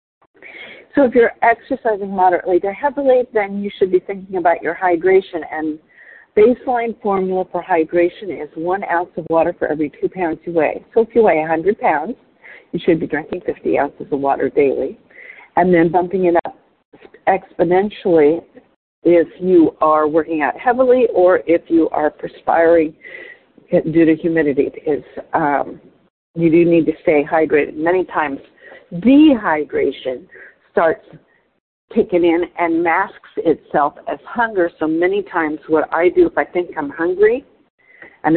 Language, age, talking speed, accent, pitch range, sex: English, 50-69, 150 wpm, American, 160-220 Hz, female